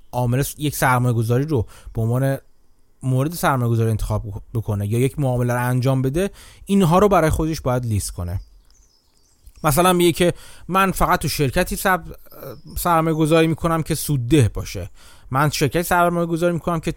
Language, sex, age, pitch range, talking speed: Persian, male, 30-49, 120-170 Hz, 145 wpm